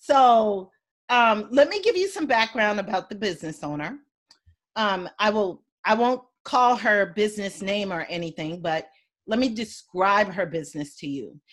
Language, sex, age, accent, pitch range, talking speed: English, female, 40-59, American, 175-250 Hz, 155 wpm